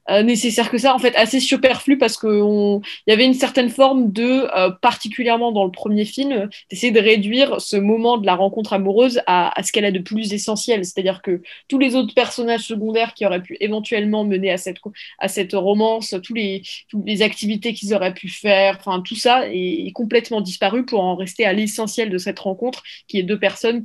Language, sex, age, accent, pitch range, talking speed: French, female, 20-39, French, 190-235 Hz, 210 wpm